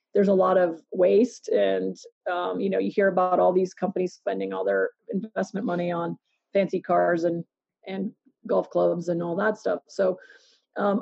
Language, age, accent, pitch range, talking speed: English, 30-49, American, 190-230 Hz, 180 wpm